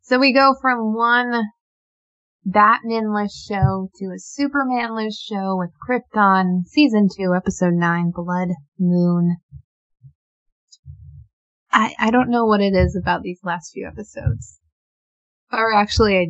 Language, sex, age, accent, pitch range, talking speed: English, female, 20-39, American, 180-225 Hz, 125 wpm